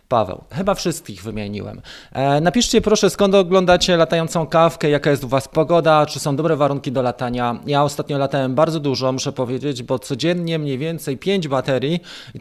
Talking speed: 175 wpm